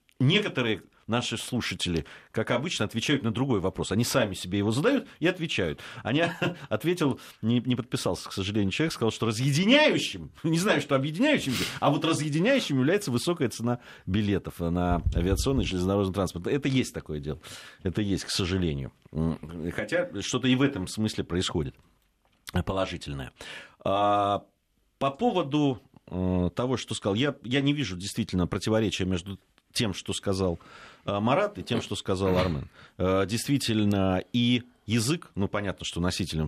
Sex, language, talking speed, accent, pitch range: male, Russian, 145 wpm, native, 90-130 Hz